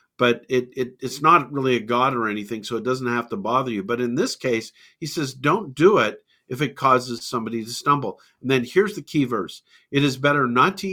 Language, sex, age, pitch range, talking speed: English, male, 50-69, 120-150 Hz, 235 wpm